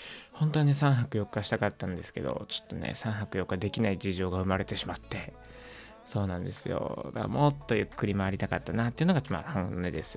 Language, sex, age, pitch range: Japanese, male, 20-39, 95-125 Hz